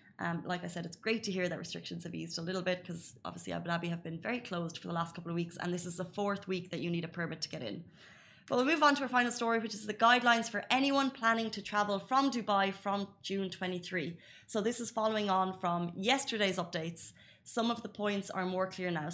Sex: female